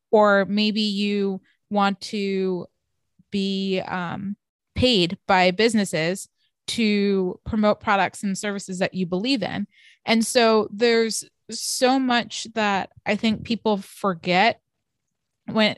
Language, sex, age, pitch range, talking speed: English, female, 20-39, 185-215 Hz, 115 wpm